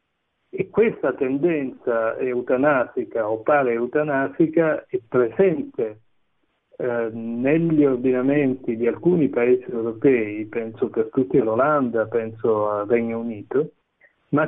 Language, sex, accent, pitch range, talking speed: Italian, male, native, 115-145 Hz, 105 wpm